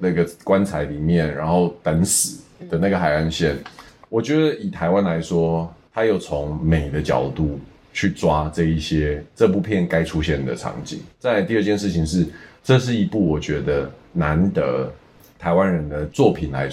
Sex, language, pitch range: male, Chinese, 80-120 Hz